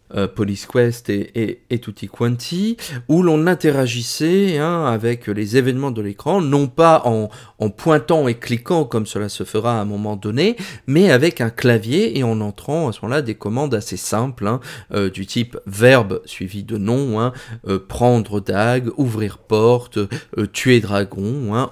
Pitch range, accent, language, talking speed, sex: 110-140 Hz, French, French, 175 wpm, male